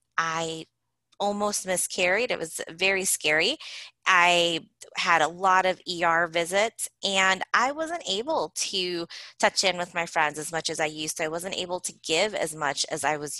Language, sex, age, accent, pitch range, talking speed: English, female, 20-39, American, 160-195 Hz, 180 wpm